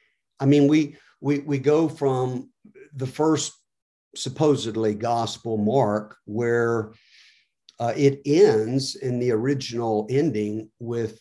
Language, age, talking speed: English, 50-69, 110 wpm